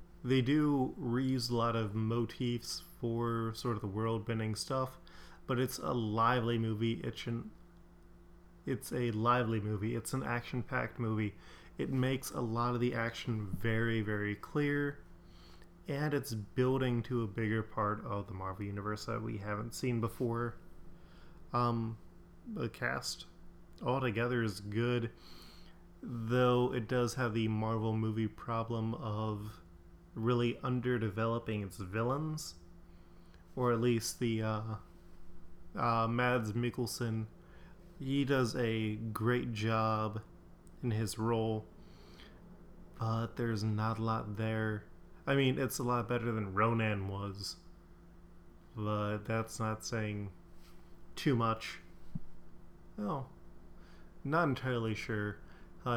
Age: 20-39